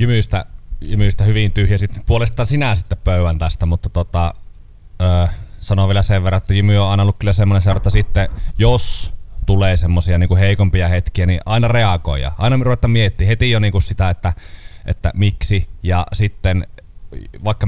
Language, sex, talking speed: Finnish, male, 155 wpm